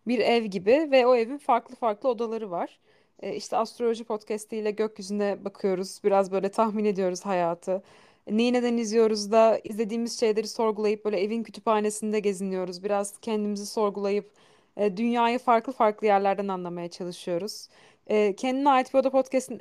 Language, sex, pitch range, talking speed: Turkish, female, 200-250 Hz, 150 wpm